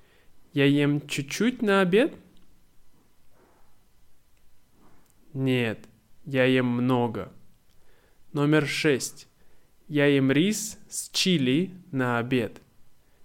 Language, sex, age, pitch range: Russian, male, 20-39, 125-155 Hz